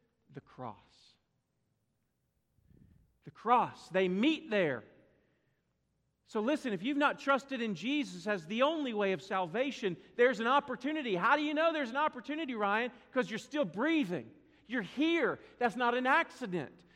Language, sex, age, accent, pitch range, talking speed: English, male, 40-59, American, 170-255 Hz, 150 wpm